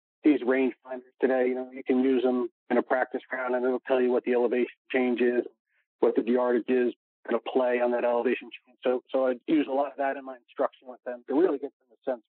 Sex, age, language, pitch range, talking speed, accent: male, 40-59, English, 120-140 Hz, 270 wpm, American